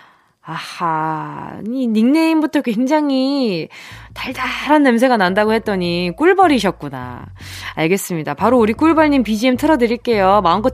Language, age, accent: Korean, 20-39, native